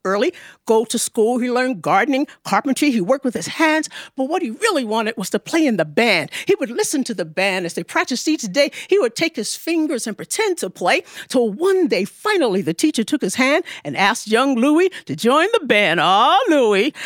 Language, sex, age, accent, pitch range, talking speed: English, female, 50-69, American, 225-335 Hz, 220 wpm